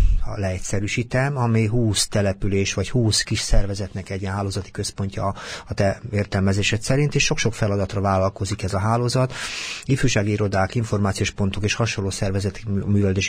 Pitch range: 100-115 Hz